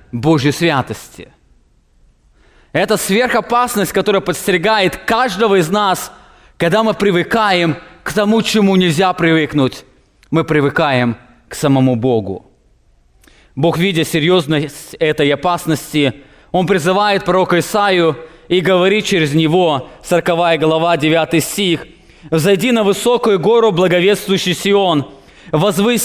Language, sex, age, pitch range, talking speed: English, male, 20-39, 160-215 Hz, 105 wpm